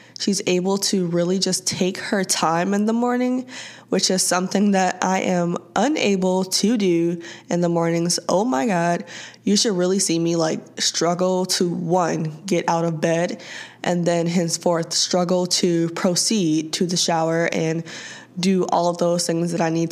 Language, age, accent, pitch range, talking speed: English, 20-39, American, 170-185 Hz, 170 wpm